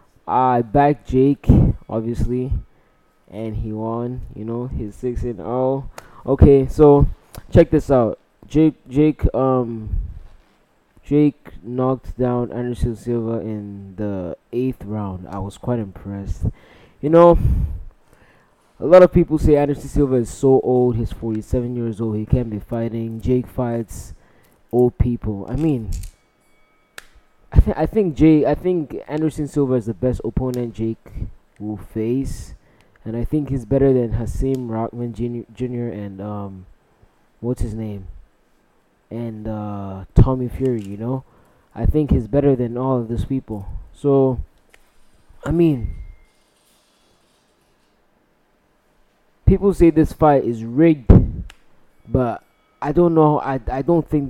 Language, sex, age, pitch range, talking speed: English, male, 20-39, 105-135 Hz, 135 wpm